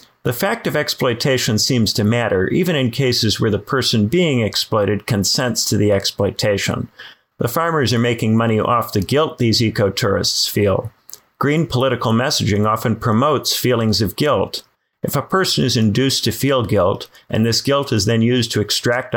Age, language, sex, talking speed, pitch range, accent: 50-69, English, male, 170 wpm, 105-130 Hz, American